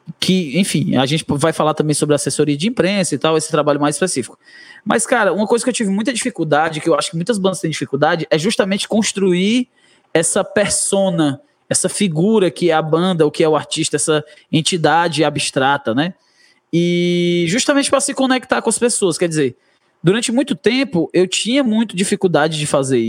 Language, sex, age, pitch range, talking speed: Hungarian, male, 20-39, 155-210 Hz, 190 wpm